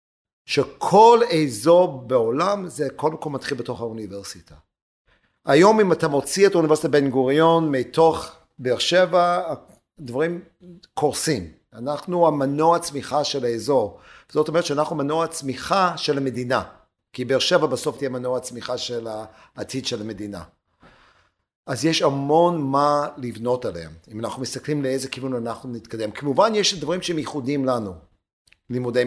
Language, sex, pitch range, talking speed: Hebrew, male, 125-165 Hz, 135 wpm